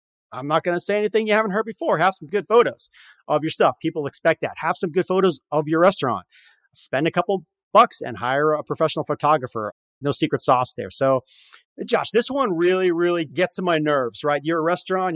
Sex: male